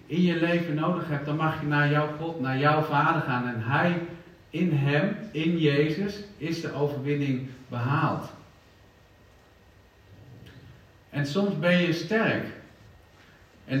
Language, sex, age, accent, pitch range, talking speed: Dutch, male, 50-69, Dutch, 105-150 Hz, 135 wpm